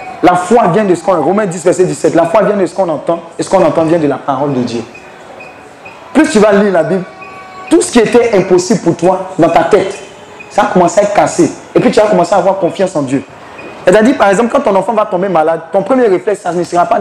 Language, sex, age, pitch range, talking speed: French, male, 30-49, 170-230 Hz, 275 wpm